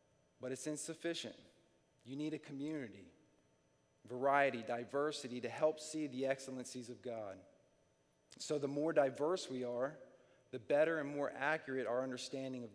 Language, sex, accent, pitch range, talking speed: English, male, American, 115-150 Hz, 140 wpm